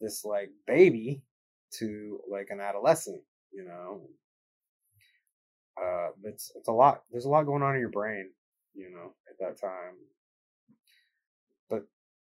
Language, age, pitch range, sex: English, 20-39, 120-160 Hz, male